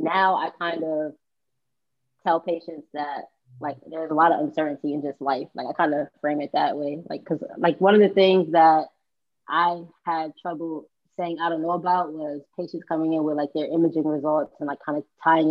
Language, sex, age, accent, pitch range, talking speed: English, female, 20-39, American, 150-180 Hz, 210 wpm